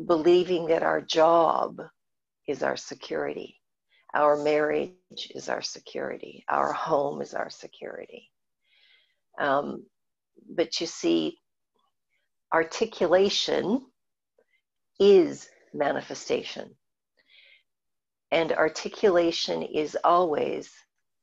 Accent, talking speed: American, 80 wpm